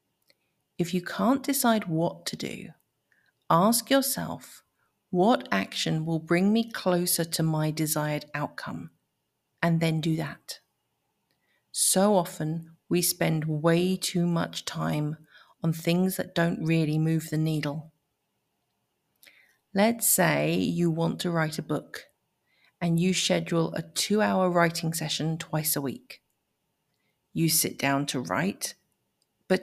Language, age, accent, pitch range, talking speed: English, 40-59, British, 155-185 Hz, 130 wpm